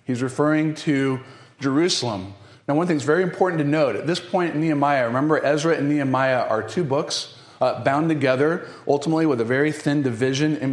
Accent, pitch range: American, 125-160 Hz